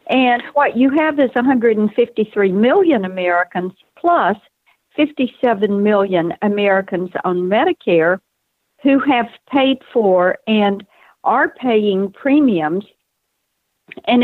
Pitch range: 190-265 Hz